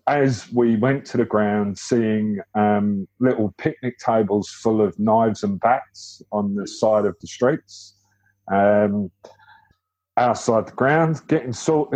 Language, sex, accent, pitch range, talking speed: English, male, British, 100-115 Hz, 140 wpm